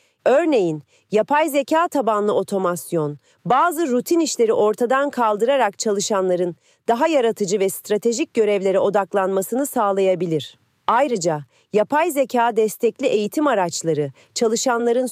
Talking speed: 100 wpm